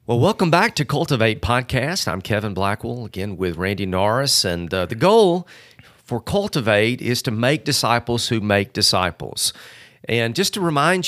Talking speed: 160 wpm